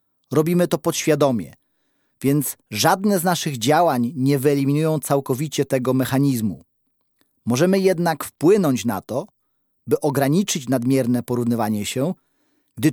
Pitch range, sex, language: 135-170 Hz, male, Polish